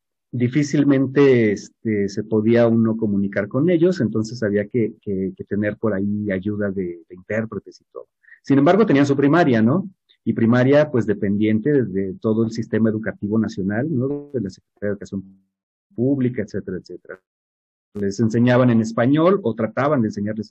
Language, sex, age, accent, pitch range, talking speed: Spanish, male, 40-59, Mexican, 110-145 Hz, 165 wpm